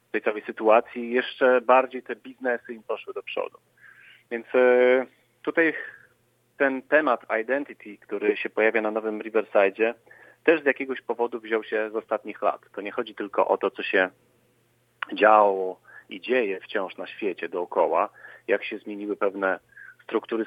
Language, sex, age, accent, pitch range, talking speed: Polish, male, 40-59, native, 110-160 Hz, 150 wpm